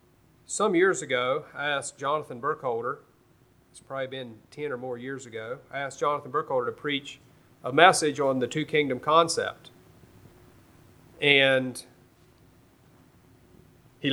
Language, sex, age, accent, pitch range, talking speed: English, male, 40-59, American, 125-165 Hz, 125 wpm